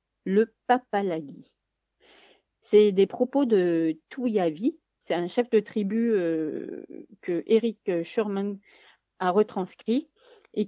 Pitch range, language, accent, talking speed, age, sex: 185-240 Hz, French, French, 105 wpm, 40-59, female